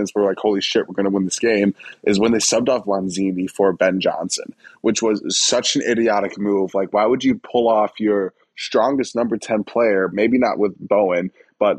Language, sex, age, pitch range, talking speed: English, male, 20-39, 100-115 Hz, 205 wpm